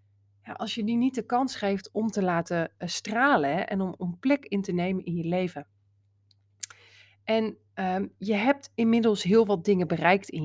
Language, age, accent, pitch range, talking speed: Dutch, 30-49, Dutch, 165-220 Hz, 170 wpm